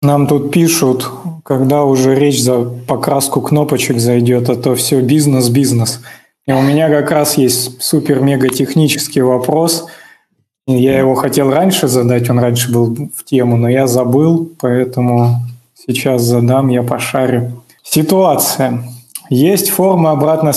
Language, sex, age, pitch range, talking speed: Russian, male, 20-39, 125-150 Hz, 130 wpm